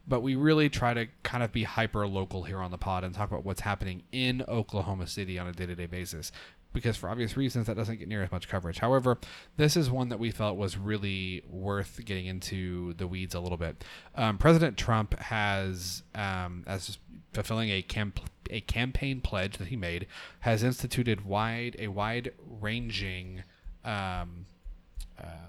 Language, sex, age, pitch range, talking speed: English, male, 30-49, 95-115 Hz, 175 wpm